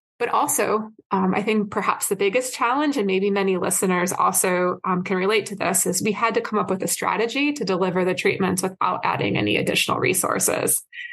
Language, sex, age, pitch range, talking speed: English, female, 20-39, 185-220 Hz, 200 wpm